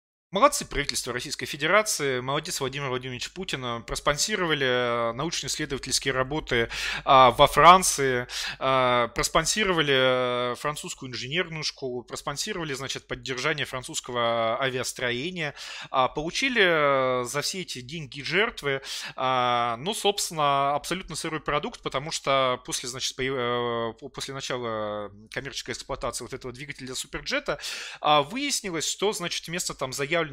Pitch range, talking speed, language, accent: 130-170 Hz, 105 wpm, Russian, native